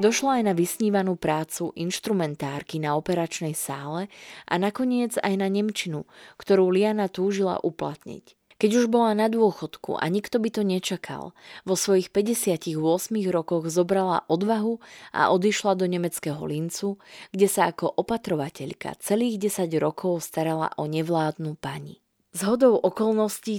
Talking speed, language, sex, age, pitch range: 130 wpm, Slovak, female, 20-39, 165-200 Hz